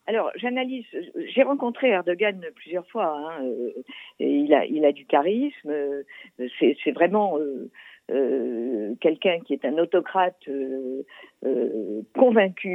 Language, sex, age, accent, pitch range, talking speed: Italian, female, 50-69, French, 150-230 Hz, 125 wpm